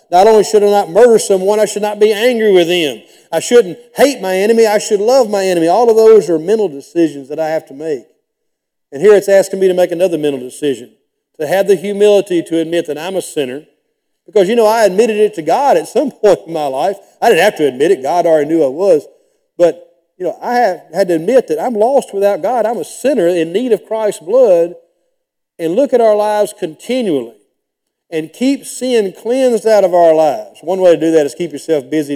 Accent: American